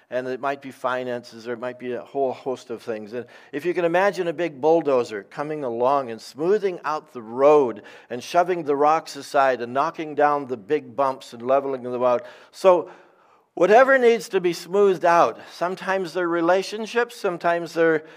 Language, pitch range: English, 115-160 Hz